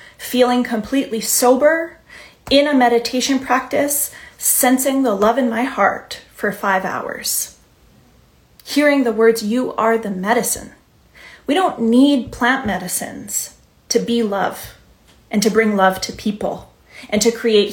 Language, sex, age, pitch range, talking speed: English, female, 30-49, 210-260 Hz, 135 wpm